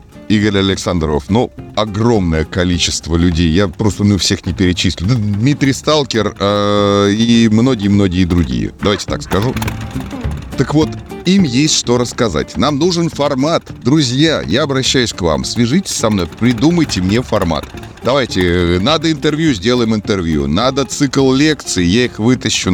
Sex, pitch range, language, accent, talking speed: male, 95-120 Hz, Russian, native, 135 wpm